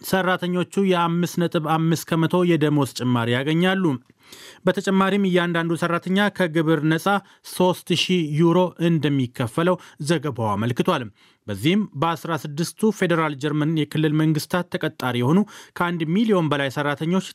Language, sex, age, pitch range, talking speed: Amharic, male, 30-49, 155-185 Hz, 95 wpm